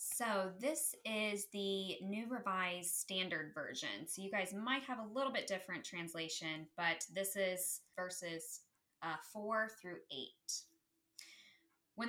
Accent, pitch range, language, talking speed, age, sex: American, 165-215 Hz, English, 135 wpm, 10-29, female